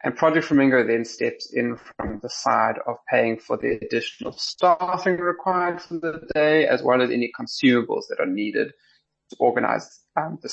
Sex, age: male, 20-39